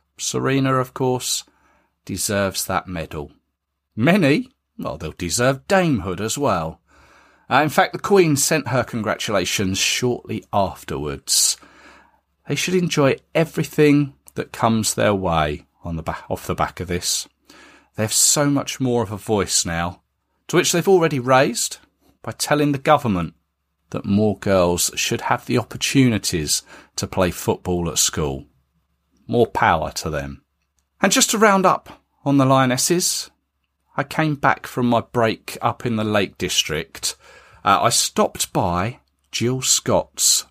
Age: 40-59